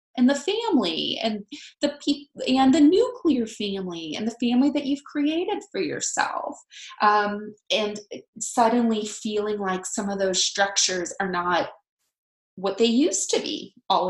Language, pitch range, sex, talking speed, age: English, 200-290 Hz, female, 150 wpm, 20-39